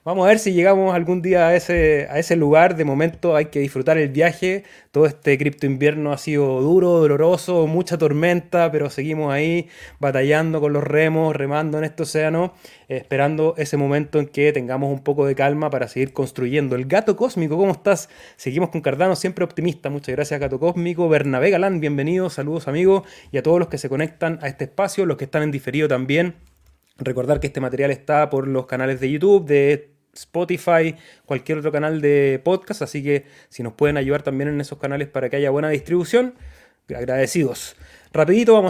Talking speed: 190 wpm